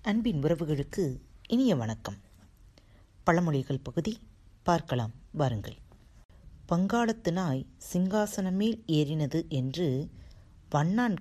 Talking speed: 75 wpm